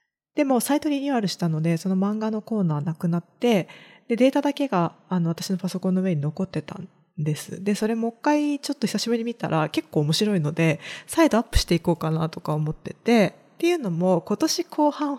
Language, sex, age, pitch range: Japanese, female, 20-39, 170-260 Hz